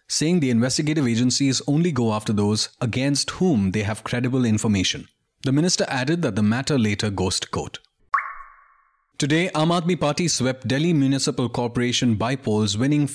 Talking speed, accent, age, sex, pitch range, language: 150 wpm, Indian, 30-49, male, 110-140 Hz, English